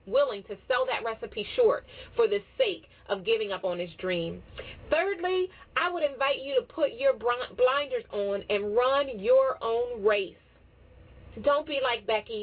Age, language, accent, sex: 30-49, English, American, female